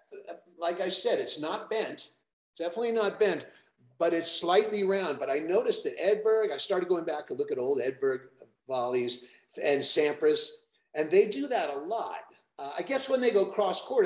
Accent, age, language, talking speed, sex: American, 50-69, English, 190 wpm, male